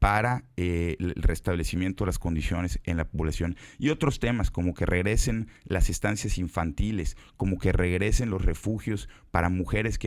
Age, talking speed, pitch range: 40-59, 160 wpm, 90-120 Hz